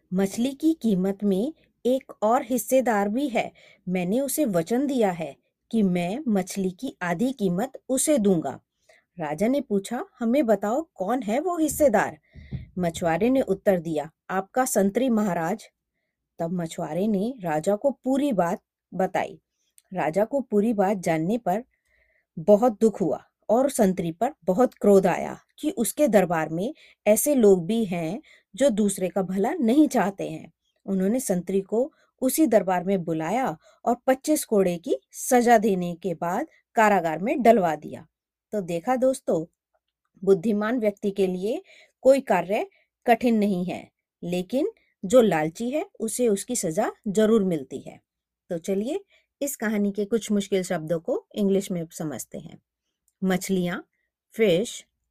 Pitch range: 185-255 Hz